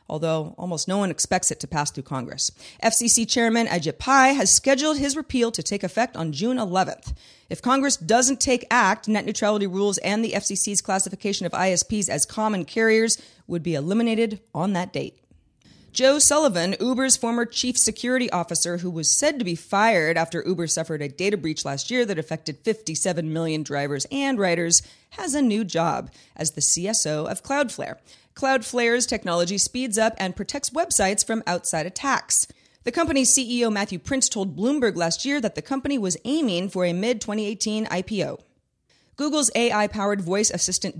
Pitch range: 170-245 Hz